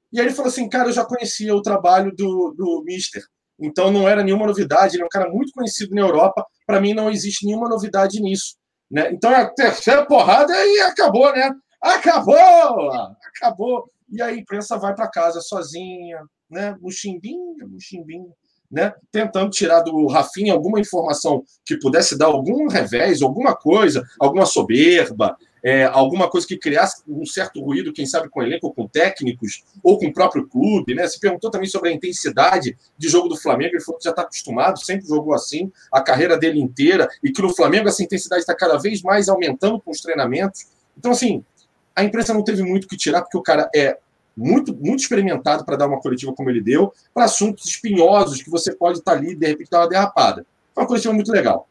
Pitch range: 170-230 Hz